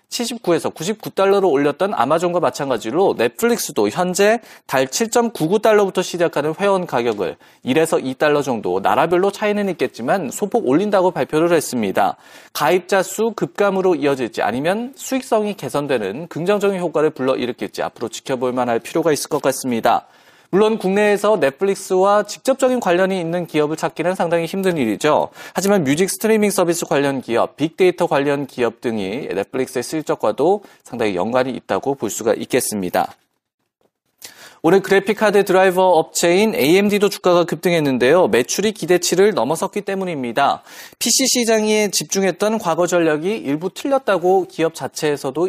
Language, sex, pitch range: Korean, male, 155-205 Hz